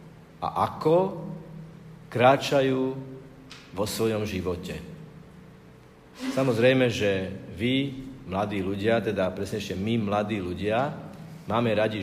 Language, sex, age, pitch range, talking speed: Slovak, male, 50-69, 110-150 Hz, 95 wpm